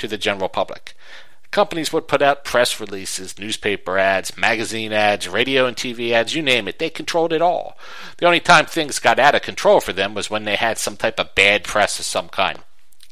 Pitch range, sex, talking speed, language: 100-135 Hz, male, 215 wpm, English